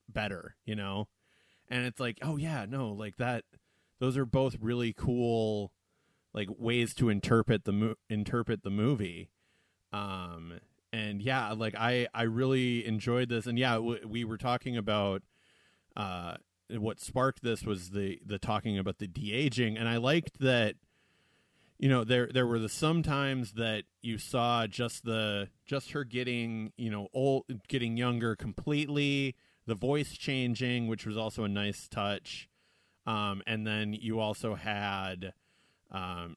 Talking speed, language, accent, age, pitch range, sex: 150 wpm, English, American, 30-49, 105-125 Hz, male